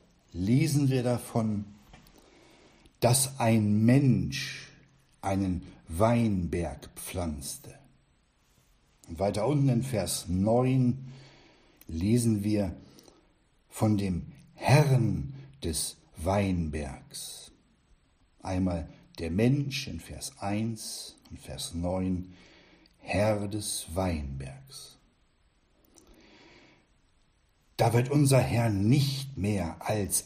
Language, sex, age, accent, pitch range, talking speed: German, male, 60-79, German, 90-125 Hz, 80 wpm